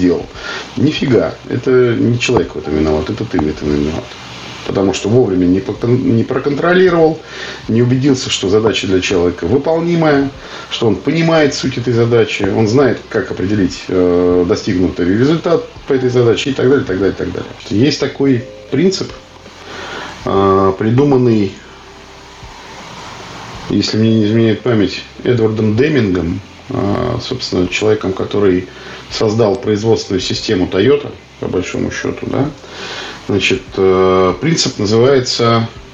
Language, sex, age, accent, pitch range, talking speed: Russian, male, 40-59, native, 95-130 Hz, 130 wpm